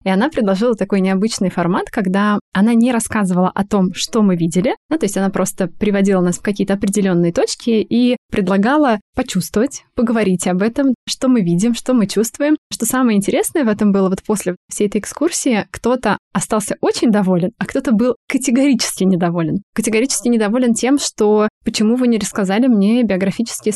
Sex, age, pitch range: female, 20-39, 190-230 Hz